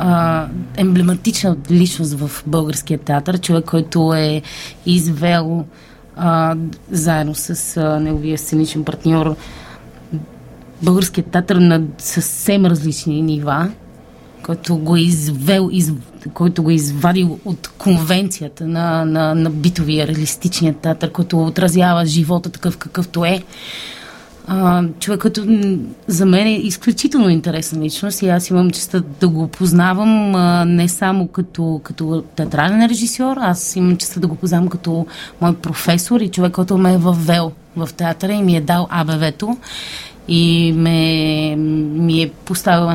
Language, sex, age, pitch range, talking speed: Bulgarian, female, 20-39, 155-180 Hz, 130 wpm